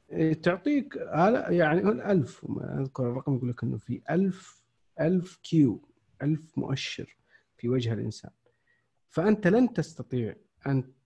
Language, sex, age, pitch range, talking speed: Arabic, male, 50-69, 115-140 Hz, 125 wpm